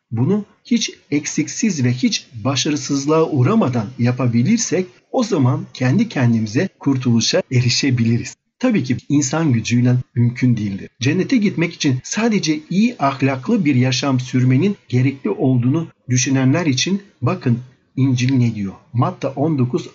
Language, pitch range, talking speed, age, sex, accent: Turkish, 125-165 Hz, 115 wpm, 50-69, male, native